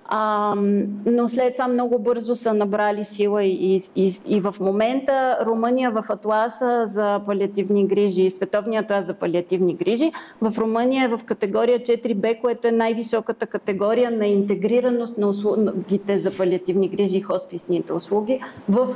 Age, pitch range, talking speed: 30-49, 200-255 Hz, 150 wpm